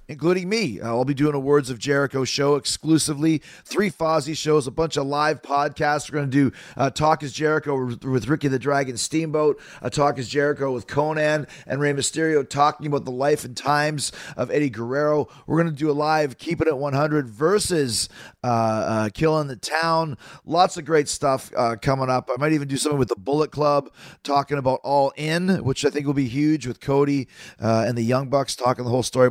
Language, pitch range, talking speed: English, 135-155 Hz, 210 wpm